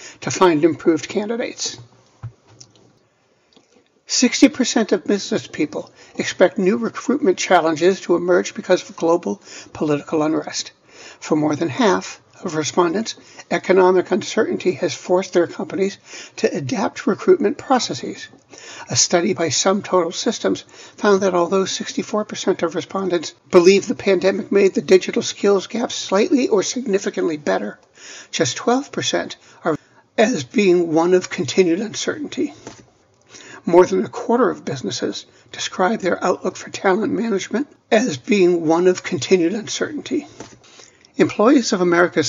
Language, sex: English, male